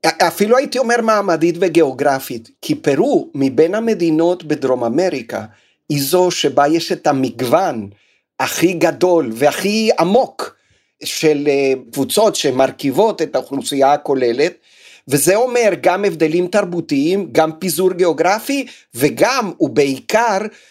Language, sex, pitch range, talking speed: Hebrew, male, 140-180 Hz, 105 wpm